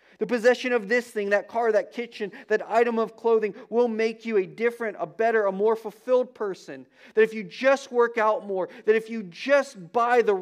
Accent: American